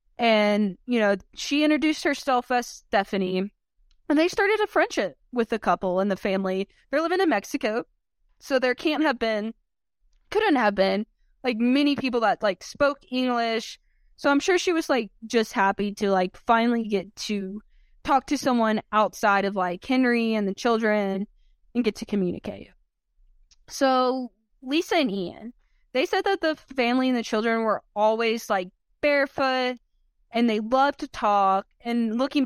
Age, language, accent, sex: 20-39, English, American, female